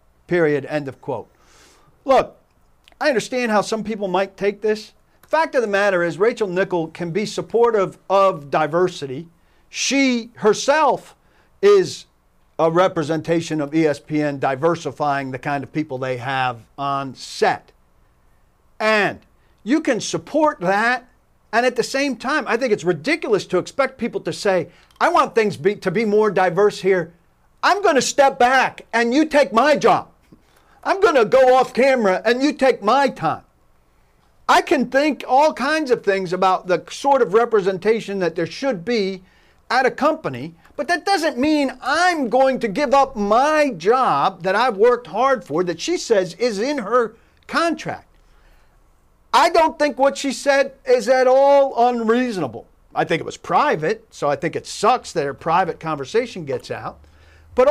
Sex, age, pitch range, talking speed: male, 50-69, 175-275 Hz, 165 wpm